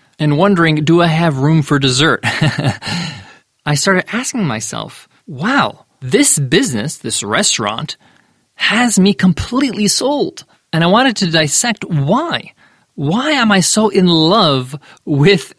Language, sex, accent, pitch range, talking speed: English, male, American, 140-195 Hz, 130 wpm